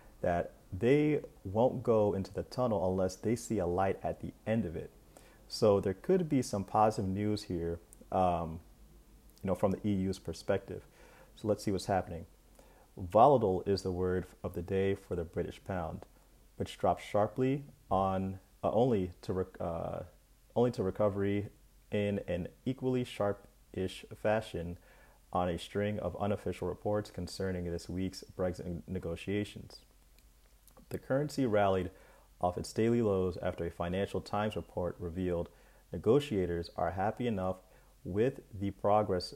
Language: English